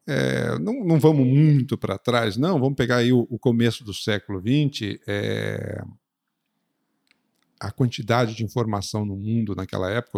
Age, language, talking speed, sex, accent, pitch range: 50-69, Portuguese, 155 wpm, male, Brazilian, 110-150 Hz